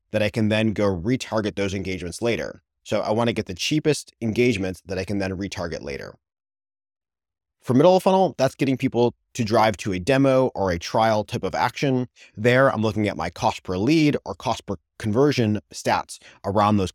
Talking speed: 195 wpm